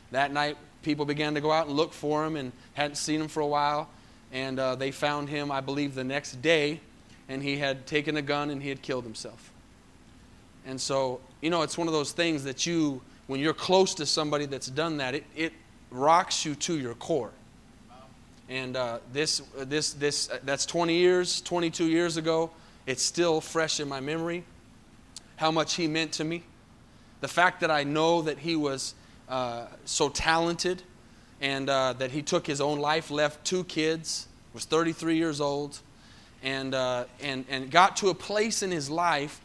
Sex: male